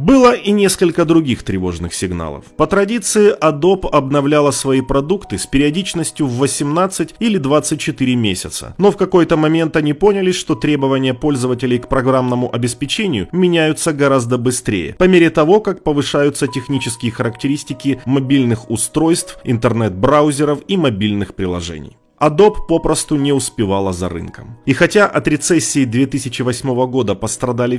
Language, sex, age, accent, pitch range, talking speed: Russian, male, 30-49, native, 120-160 Hz, 130 wpm